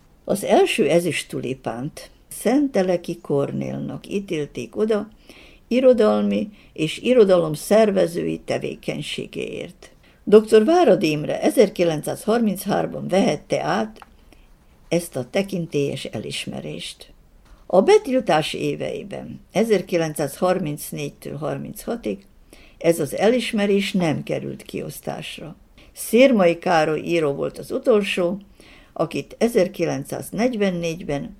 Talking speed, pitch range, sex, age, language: 80 wpm, 160-220 Hz, female, 60-79, Hungarian